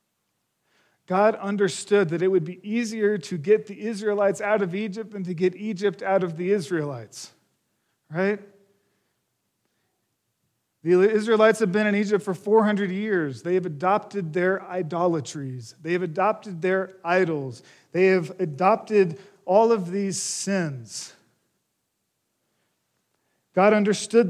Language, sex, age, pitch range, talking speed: English, male, 40-59, 165-205 Hz, 125 wpm